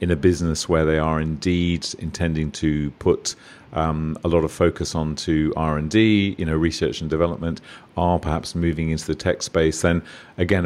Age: 40-59